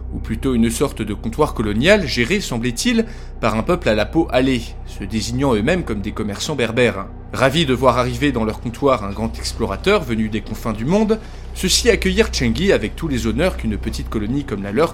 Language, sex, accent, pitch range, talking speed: French, male, French, 110-160 Hz, 205 wpm